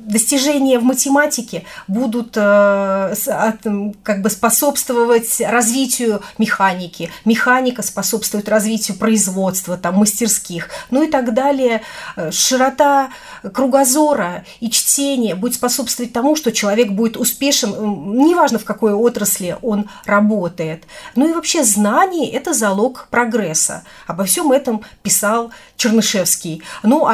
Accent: native